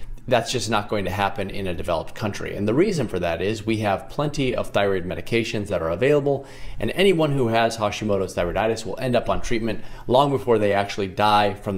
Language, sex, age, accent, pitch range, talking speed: English, male, 30-49, American, 100-125 Hz, 215 wpm